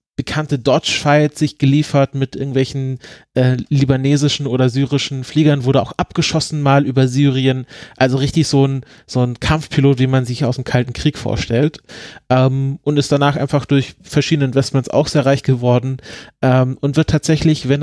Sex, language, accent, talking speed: male, German, German, 165 wpm